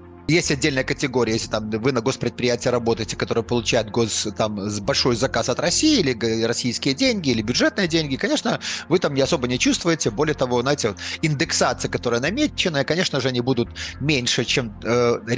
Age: 30-49